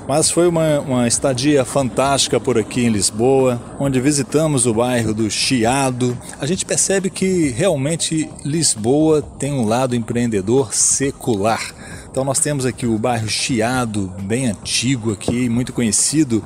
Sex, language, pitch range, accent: male, Portuguese, 110-140 Hz, Brazilian